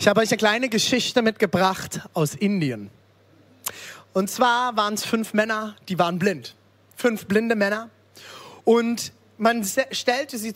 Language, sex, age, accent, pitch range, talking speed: German, male, 30-49, German, 200-270 Hz, 140 wpm